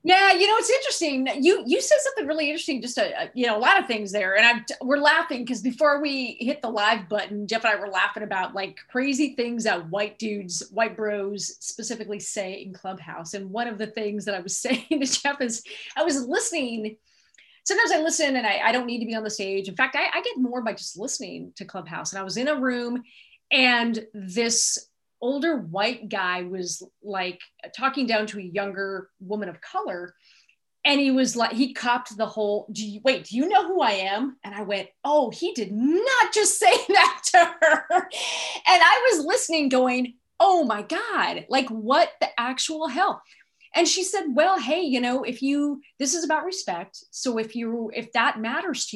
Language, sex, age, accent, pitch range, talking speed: English, female, 30-49, American, 210-300 Hz, 210 wpm